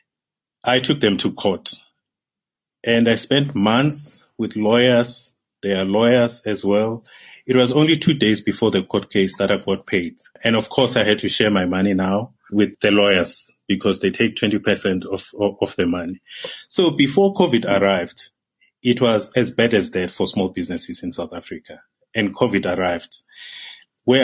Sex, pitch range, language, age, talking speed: male, 100-120 Hz, English, 30-49, 175 wpm